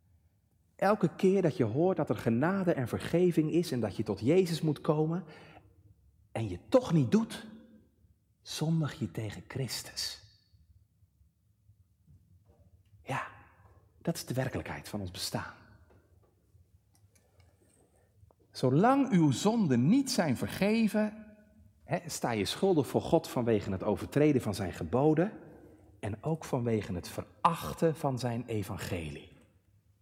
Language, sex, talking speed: Dutch, male, 120 wpm